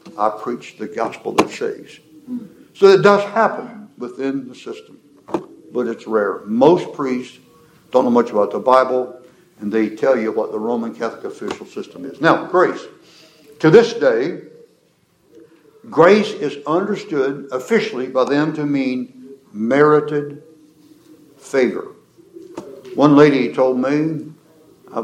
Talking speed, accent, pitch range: 130 wpm, American, 125-200 Hz